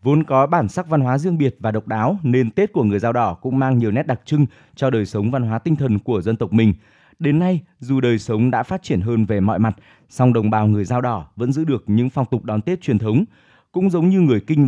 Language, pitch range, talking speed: Vietnamese, 115-145 Hz, 275 wpm